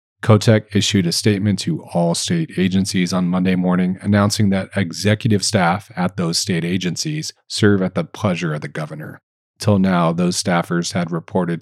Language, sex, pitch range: English, male, 85-105 Hz